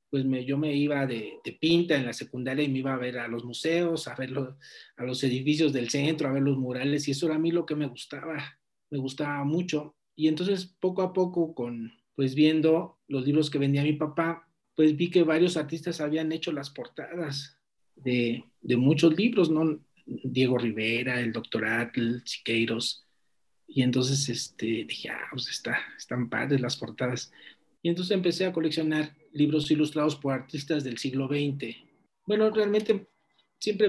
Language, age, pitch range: Spanish, 40-59, 135-160 Hz